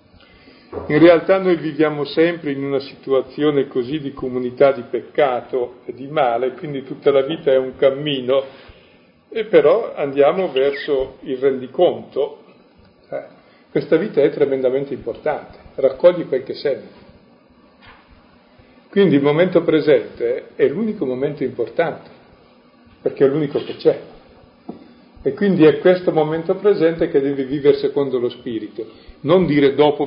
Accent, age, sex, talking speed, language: native, 50-69, male, 135 wpm, Italian